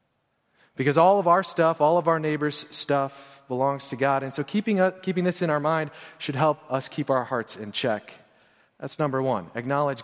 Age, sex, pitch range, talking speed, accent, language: 30-49, male, 120-155 Hz, 195 wpm, American, English